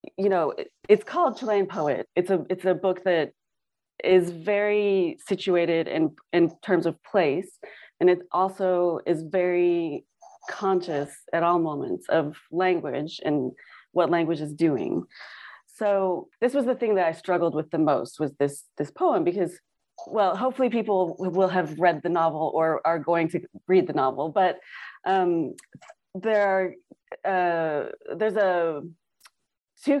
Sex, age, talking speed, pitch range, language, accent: female, 30-49, 150 wpm, 165-195 Hz, English, American